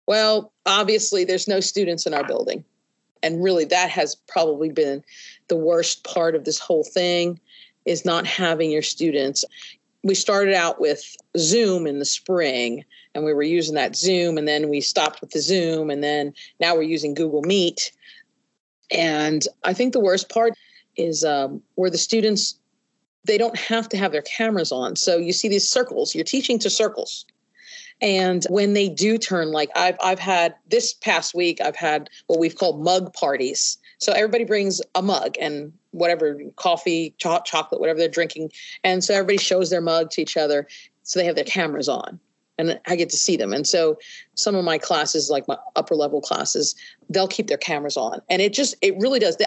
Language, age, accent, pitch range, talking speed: English, 40-59, American, 165-220 Hz, 190 wpm